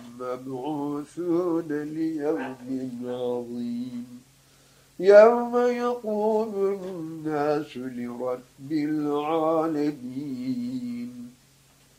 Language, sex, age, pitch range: Turkish, male, 60-79, 155-210 Hz